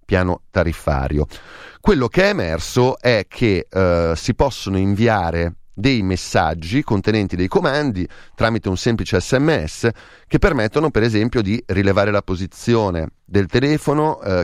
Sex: male